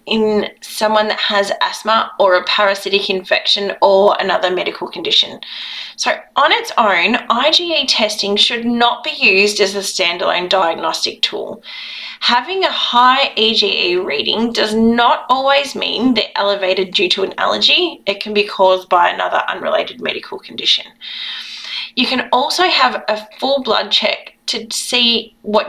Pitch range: 200-280 Hz